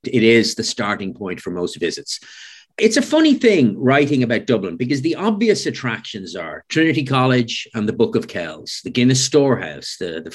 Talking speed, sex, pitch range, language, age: 185 wpm, male, 115-140 Hz, English, 50-69